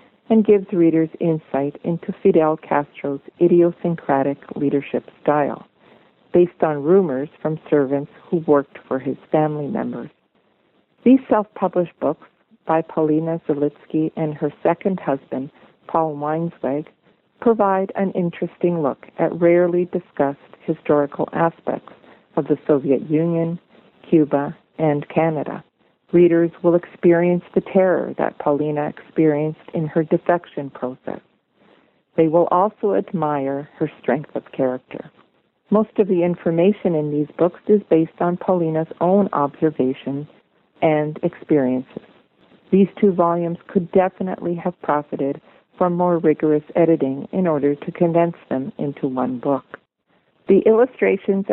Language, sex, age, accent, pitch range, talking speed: English, female, 50-69, American, 150-180 Hz, 120 wpm